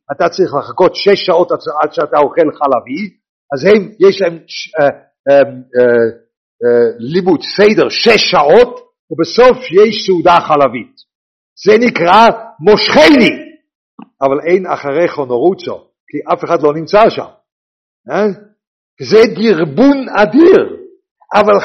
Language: English